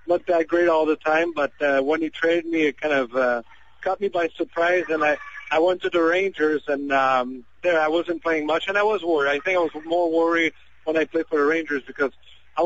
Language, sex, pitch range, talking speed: English, male, 135-160 Hz, 245 wpm